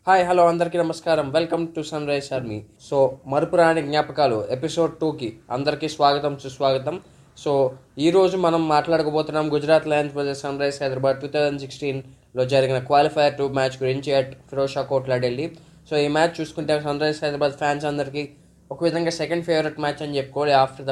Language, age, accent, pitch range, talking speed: Telugu, 20-39, native, 135-150 Hz, 160 wpm